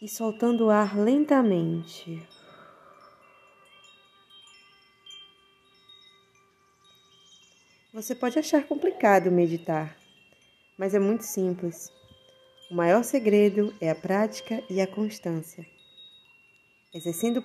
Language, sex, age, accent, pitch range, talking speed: Portuguese, female, 20-39, Brazilian, 185-235 Hz, 85 wpm